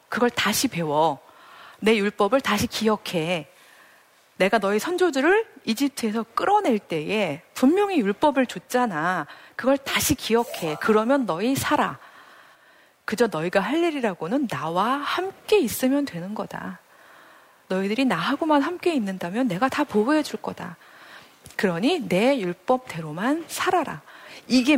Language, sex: Korean, female